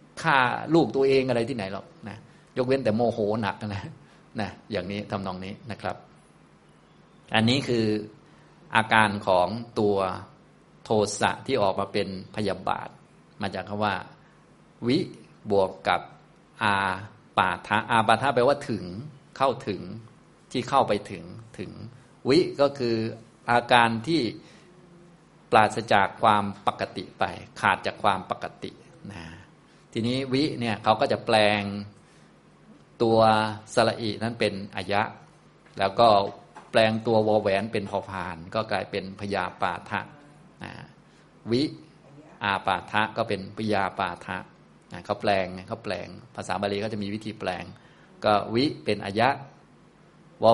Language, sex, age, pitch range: Thai, male, 20-39, 100-115 Hz